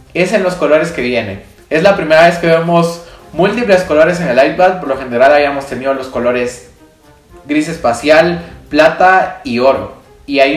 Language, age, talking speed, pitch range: Spanish, 20-39, 175 wpm, 130-170 Hz